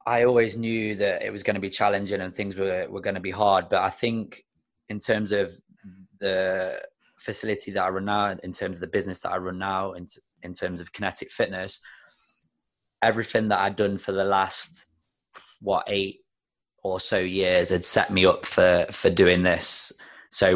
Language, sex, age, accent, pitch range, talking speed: English, male, 20-39, British, 90-100 Hz, 195 wpm